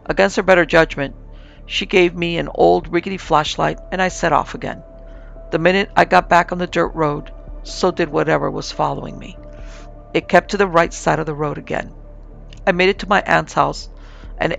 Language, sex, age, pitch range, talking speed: English, female, 50-69, 110-180 Hz, 200 wpm